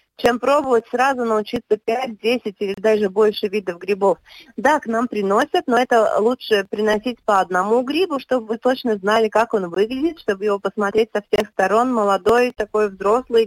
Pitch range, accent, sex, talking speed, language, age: 200-245 Hz, native, female, 170 wpm, Russian, 20-39